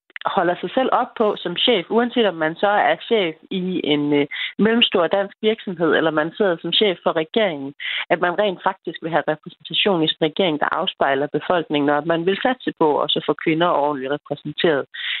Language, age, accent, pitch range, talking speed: Danish, 30-49, native, 150-190 Hz, 195 wpm